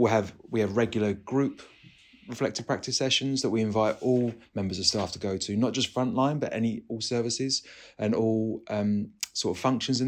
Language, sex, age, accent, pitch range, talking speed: English, male, 30-49, British, 105-125 Hz, 190 wpm